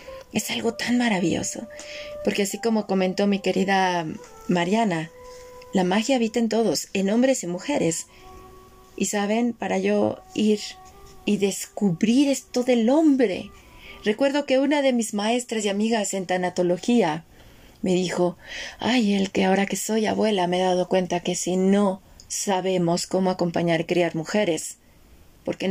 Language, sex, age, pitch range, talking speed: Spanish, female, 30-49, 185-250 Hz, 145 wpm